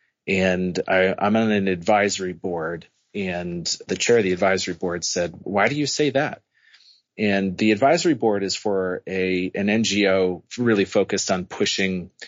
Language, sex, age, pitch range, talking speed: English, male, 30-49, 95-115 Hz, 155 wpm